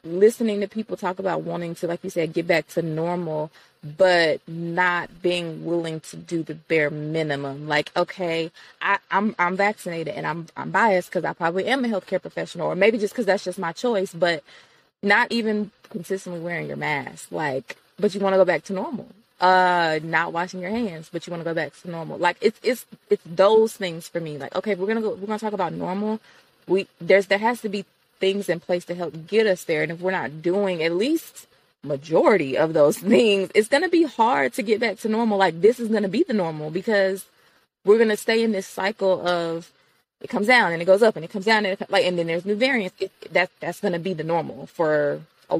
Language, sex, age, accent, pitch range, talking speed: English, female, 20-39, American, 170-210 Hz, 230 wpm